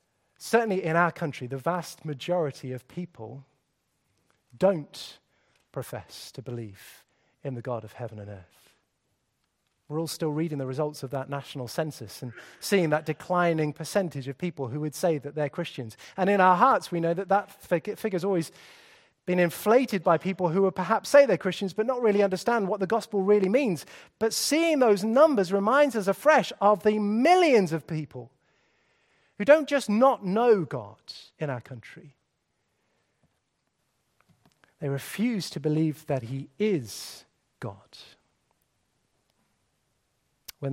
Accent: British